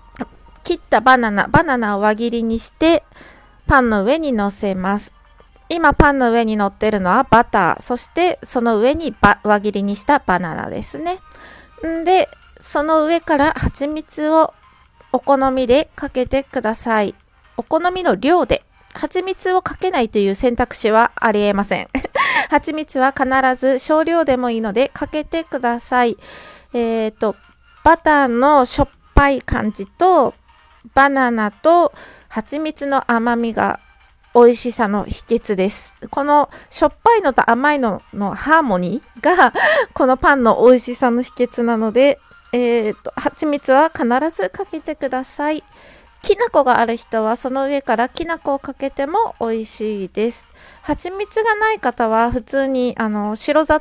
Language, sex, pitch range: Japanese, female, 225-300 Hz